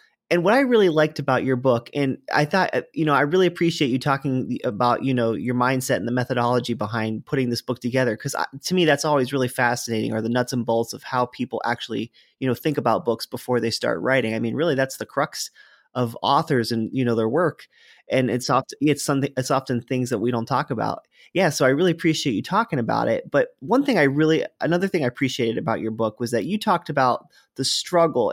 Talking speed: 235 wpm